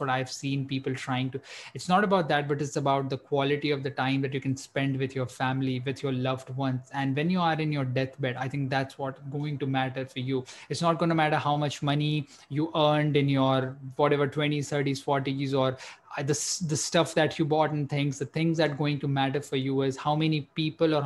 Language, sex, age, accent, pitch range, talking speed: English, male, 20-39, Indian, 135-155 Hz, 240 wpm